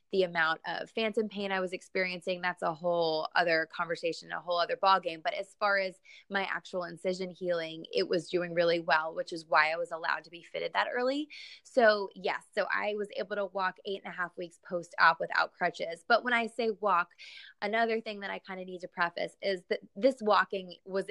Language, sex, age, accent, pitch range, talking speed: English, female, 20-39, American, 175-200 Hz, 215 wpm